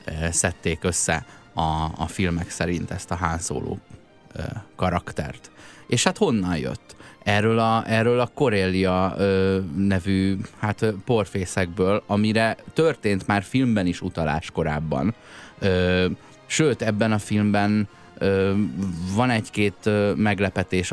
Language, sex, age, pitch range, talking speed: Hungarian, male, 20-39, 85-100 Hz, 100 wpm